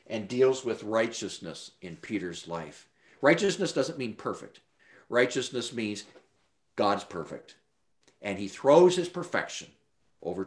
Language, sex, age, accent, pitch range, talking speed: English, male, 50-69, American, 125-185 Hz, 120 wpm